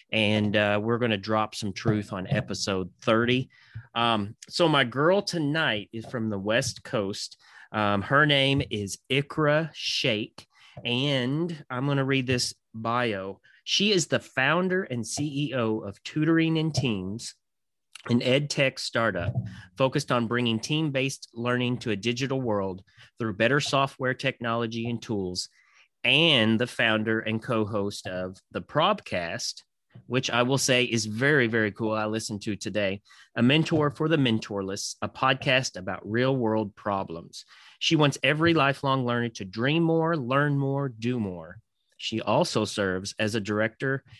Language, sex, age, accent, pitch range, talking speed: English, male, 30-49, American, 105-135 Hz, 150 wpm